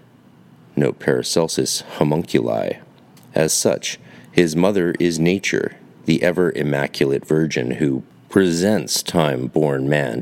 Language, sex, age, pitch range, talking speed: English, male, 40-59, 70-90 Hz, 100 wpm